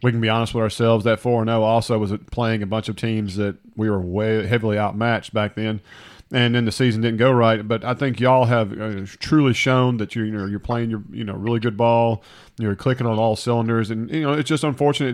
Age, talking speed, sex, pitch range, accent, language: 40-59, 240 wpm, male, 115-135 Hz, American, English